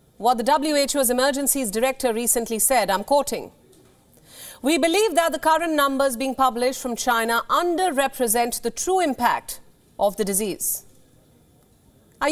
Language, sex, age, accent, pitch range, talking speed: English, female, 40-59, Indian, 235-315 Hz, 130 wpm